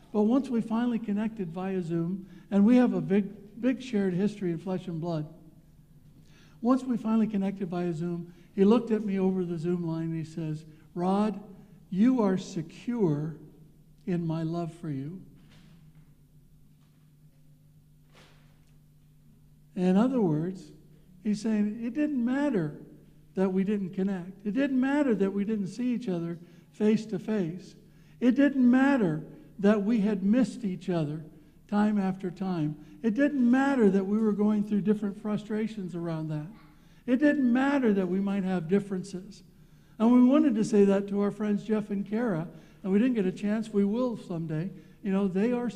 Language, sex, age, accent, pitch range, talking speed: English, male, 60-79, American, 170-225 Hz, 165 wpm